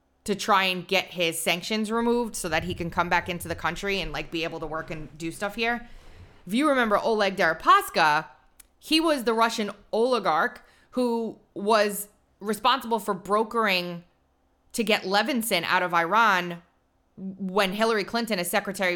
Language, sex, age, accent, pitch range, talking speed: English, female, 20-39, American, 160-205 Hz, 165 wpm